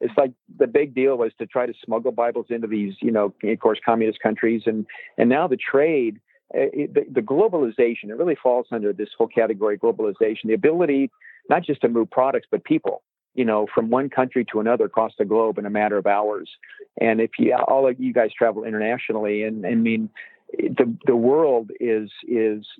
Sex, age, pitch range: male, 50-69, 110-135 Hz